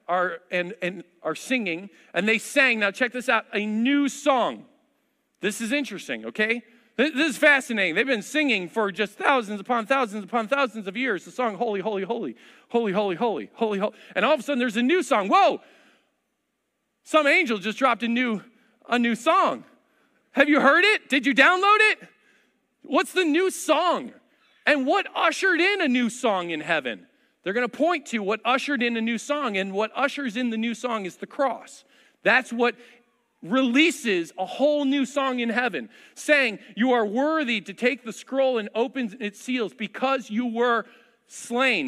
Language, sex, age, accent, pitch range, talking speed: English, male, 40-59, American, 220-275 Hz, 185 wpm